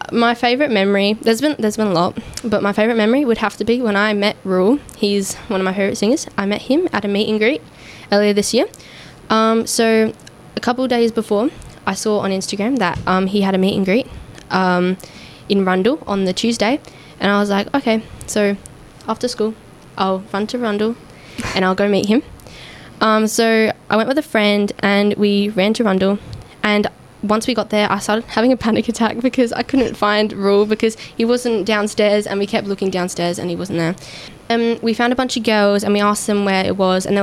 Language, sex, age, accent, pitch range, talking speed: English, female, 10-29, Australian, 195-225 Hz, 220 wpm